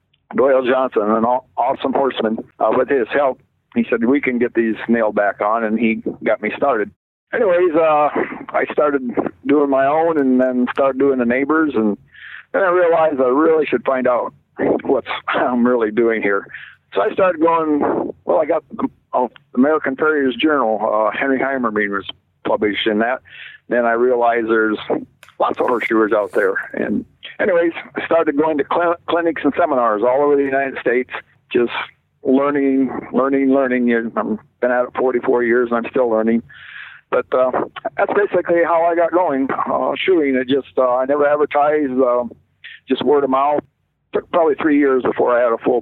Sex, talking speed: male, 180 wpm